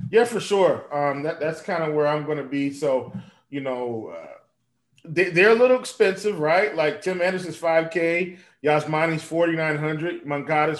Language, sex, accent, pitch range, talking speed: English, male, American, 145-170 Hz, 155 wpm